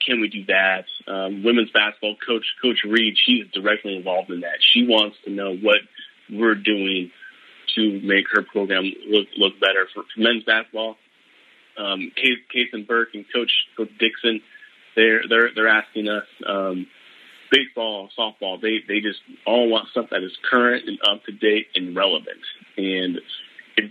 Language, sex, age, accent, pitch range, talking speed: English, male, 30-49, American, 100-125 Hz, 165 wpm